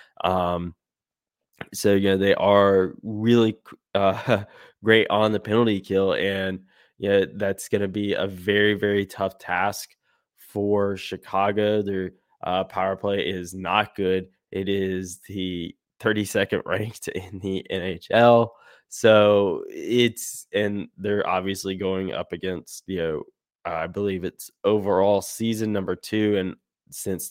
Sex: male